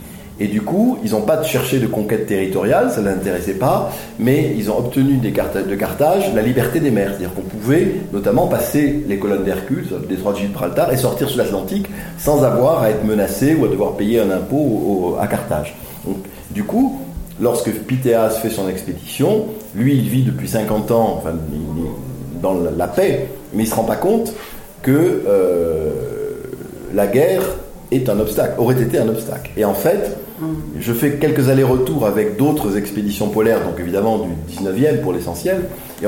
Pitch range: 95-145 Hz